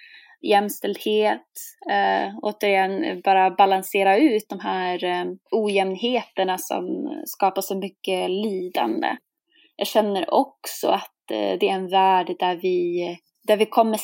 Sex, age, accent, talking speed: female, 20-39, native, 105 wpm